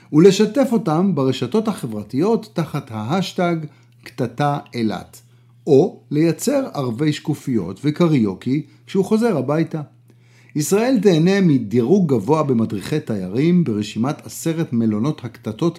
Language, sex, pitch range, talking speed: Hebrew, male, 120-175 Hz, 100 wpm